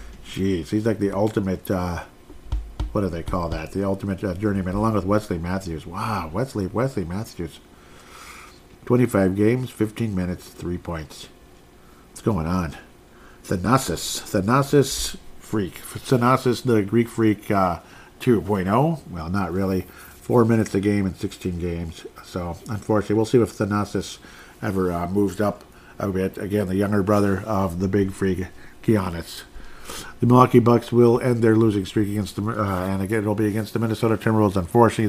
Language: English